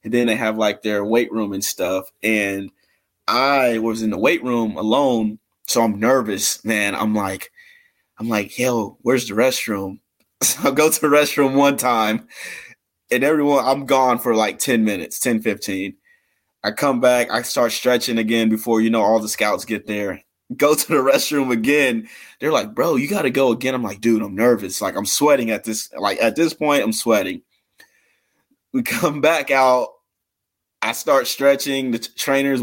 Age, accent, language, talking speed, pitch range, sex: 20-39, American, English, 185 wpm, 110-130 Hz, male